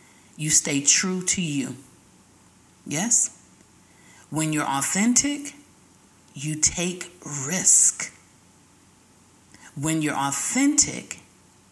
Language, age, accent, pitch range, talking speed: English, 40-59, American, 150-235 Hz, 75 wpm